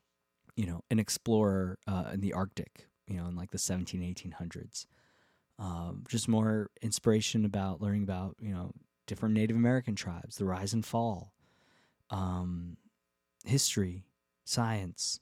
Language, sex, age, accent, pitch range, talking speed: English, male, 20-39, American, 95-115 Hz, 140 wpm